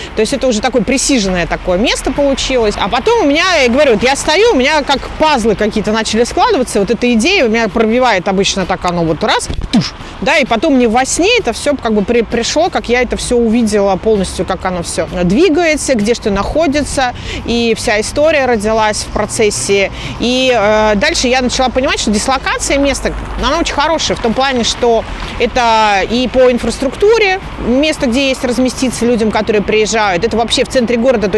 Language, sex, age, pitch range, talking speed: Russian, female, 30-49, 210-265 Hz, 185 wpm